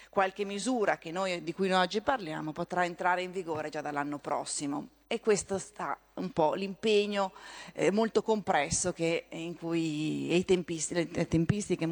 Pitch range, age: 160-195 Hz, 30-49